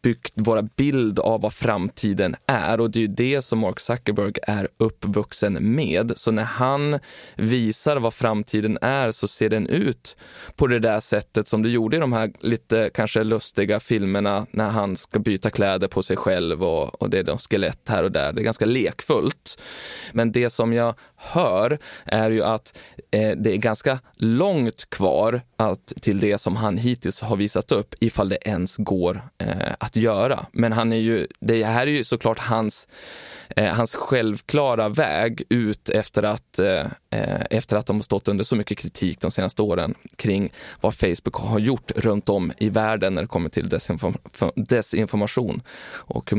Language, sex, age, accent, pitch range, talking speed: Swedish, male, 20-39, native, 105-120 Hz, 180 wpm